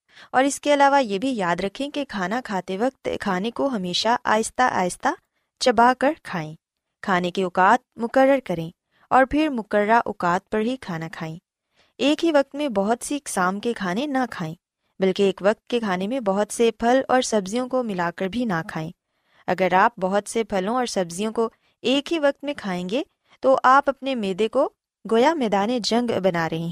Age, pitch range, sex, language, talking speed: 20-39, 185-260 Hz, female, Urdu, 190 wpm